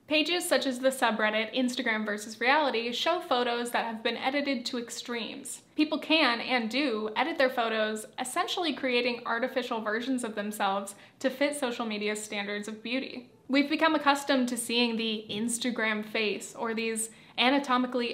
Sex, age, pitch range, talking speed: female, 10-29, 225-265 Hz, 155 wpm